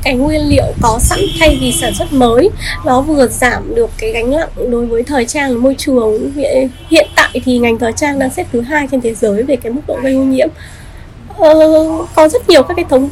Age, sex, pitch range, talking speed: 10-29, female, 245-315 Hz, 230 wpm